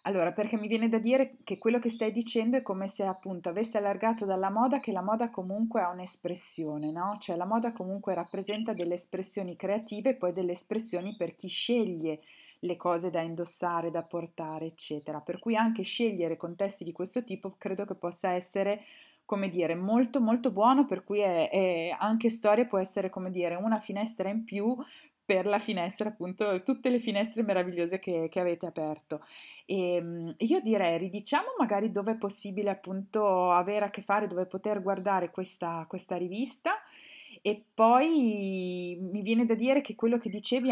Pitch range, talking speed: 180-225 Hz, 175 wpm